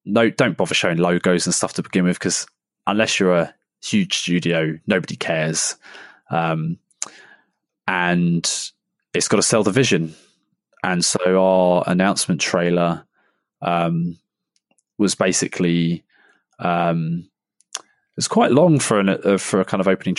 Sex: male